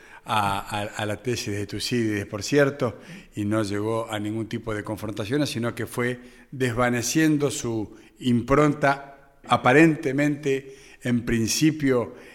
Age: 40-59